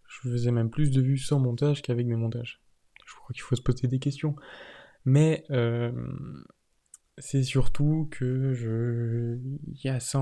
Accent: French